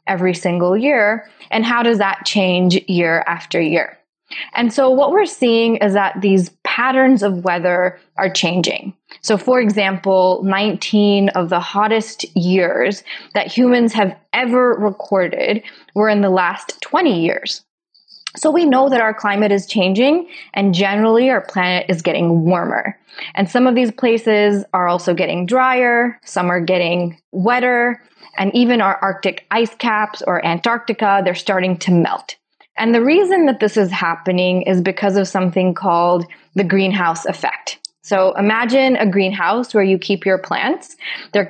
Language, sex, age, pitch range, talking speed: English, female, 20-39, 185-235 Hz, 155 wpm